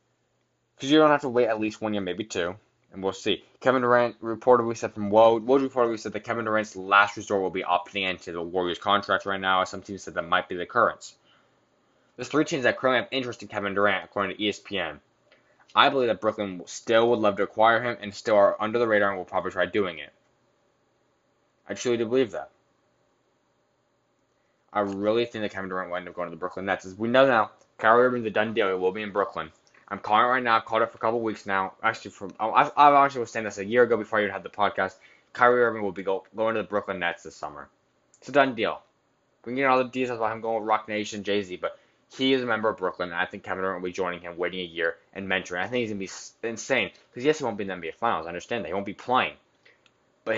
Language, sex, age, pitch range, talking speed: English, male, 10-29, 95-120 Hz, 260 wpm